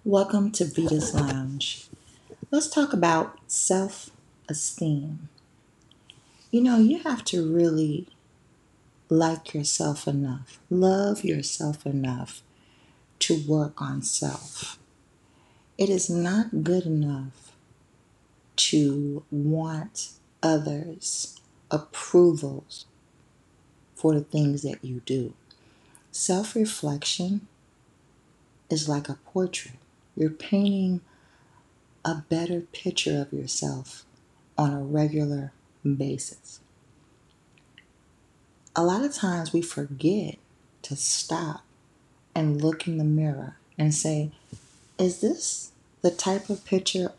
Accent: American